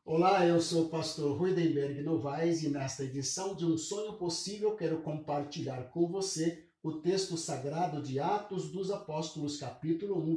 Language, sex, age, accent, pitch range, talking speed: Portuguese, male, 50-69, Brazilian, 150-200 Hz, 160 wpm